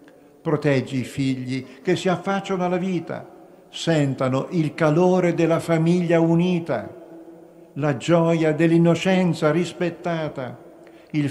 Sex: male